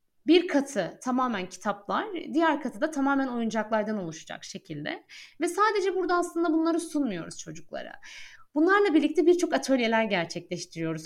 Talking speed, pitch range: 125 wpm, 195-315 Hz